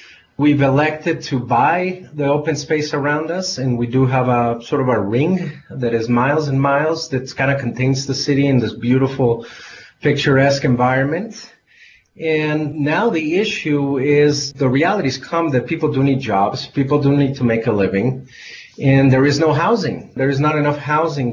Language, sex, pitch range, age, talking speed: English, male, 120-150 Hz, 30-49, 180 wpm